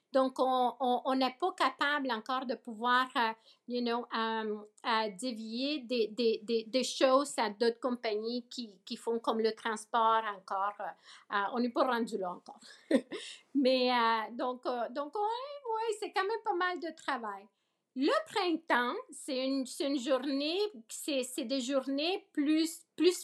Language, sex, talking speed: French, female, 175 wpm